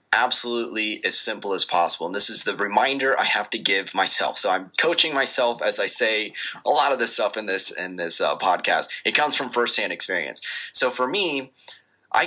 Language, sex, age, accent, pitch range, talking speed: English, male, 20-39, American, 105-130 Hz, 205 wpm